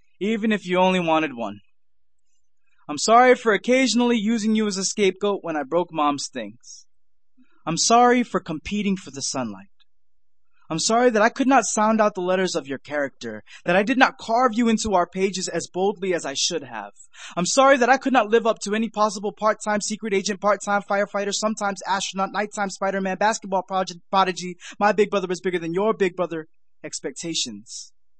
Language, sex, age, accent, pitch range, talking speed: English, male, 20-39, American, 165-215 Hz, 185 wpm